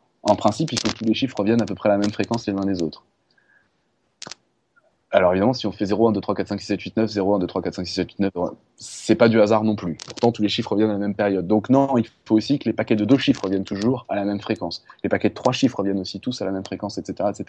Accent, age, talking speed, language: French, 20-39, 310 wpm, French